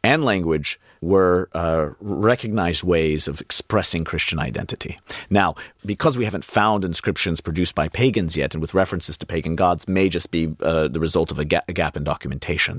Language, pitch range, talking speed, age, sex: English, 85-105 Hz, 180 wpm, 40-59, male